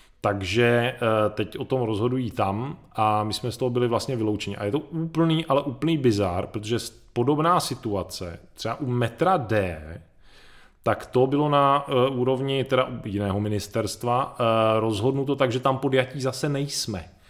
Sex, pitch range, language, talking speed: male, 110-135 Hz, Czech, 155 wpm